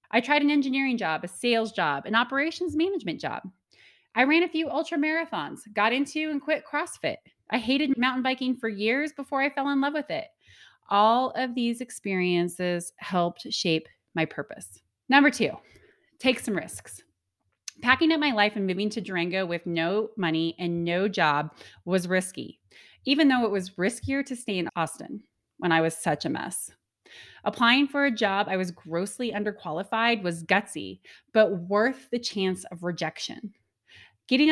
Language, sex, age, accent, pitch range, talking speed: English, female, 20-39, American, 180-265 Hz, 170 wpm